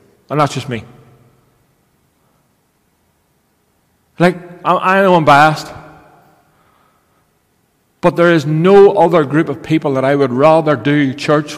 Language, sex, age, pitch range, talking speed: English, male, 40-59, 120-155 Hz, 120 wpm